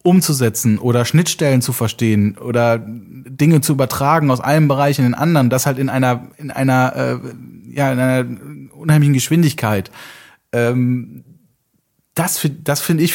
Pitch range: 130-170 Hz